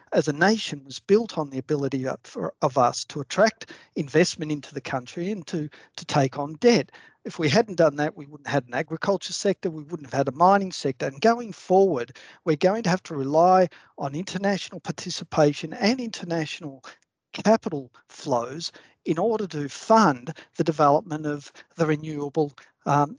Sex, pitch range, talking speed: male, 150-200 Hz, 175 wpm